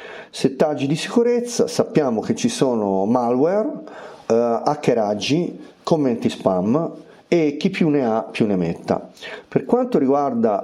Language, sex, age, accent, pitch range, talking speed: Italian, male, 40-59, native, 110-160 Hz, 125 wpm